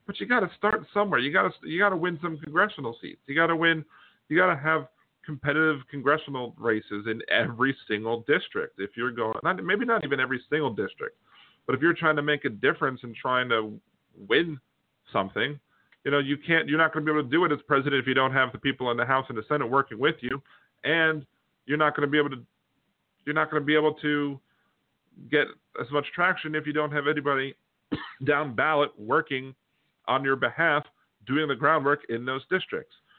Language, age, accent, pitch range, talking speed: English, 40-59, American, 115-150 Hz, 215 wpm